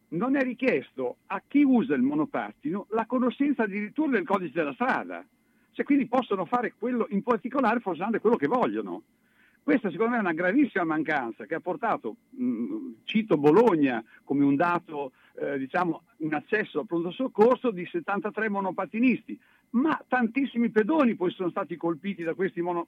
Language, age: Italian, 50-69